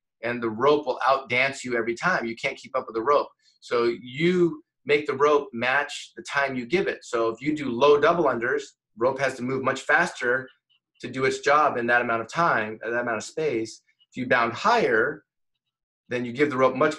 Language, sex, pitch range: English, male, 130-175 Hz